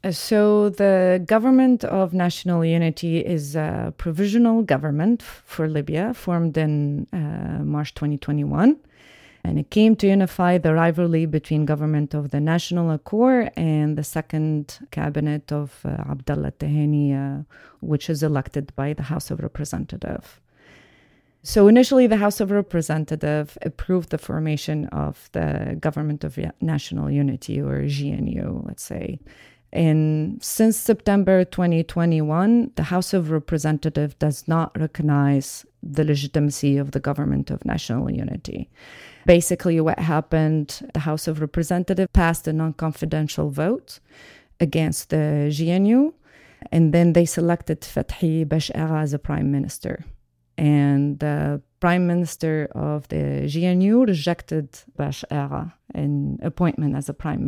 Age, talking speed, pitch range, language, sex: 30-49, 130 wpm, 150-175 Hz, English, female